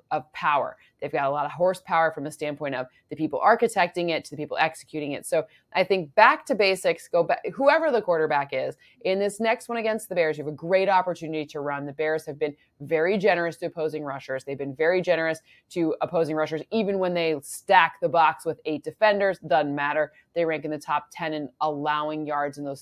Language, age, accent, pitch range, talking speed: English, 20-39, American, 150-185 Hz, 225 wpm